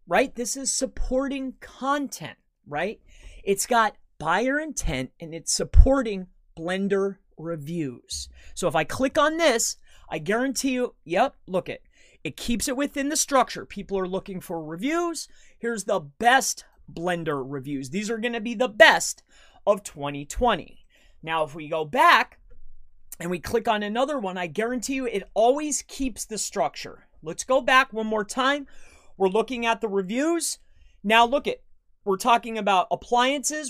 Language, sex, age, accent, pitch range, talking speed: English, male, 30-49, American, 180-255 Hz, 160 wpm